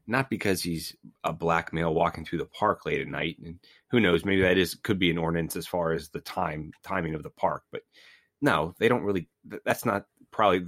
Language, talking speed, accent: English, 225 wpm, American